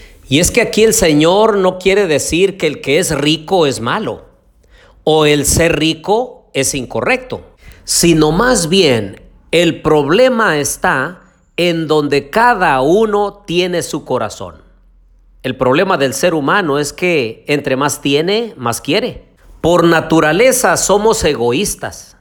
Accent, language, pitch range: Mexican, Spanish, 135-185 Hz